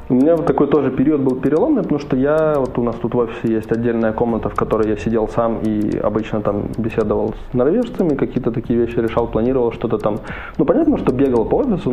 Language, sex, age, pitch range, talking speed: Russian, male, 20-39, 115-140 Hz, 220 wpm